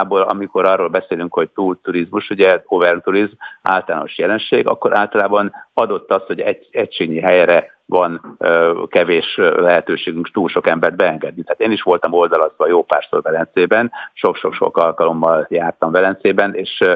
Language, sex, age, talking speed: Hungarian, male, 50-69, 130 wpm